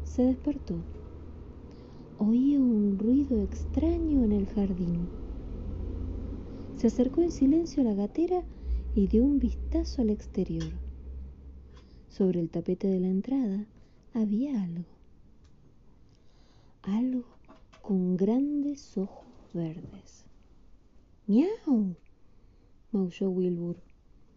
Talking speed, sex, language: 95 wpm, female, Spanish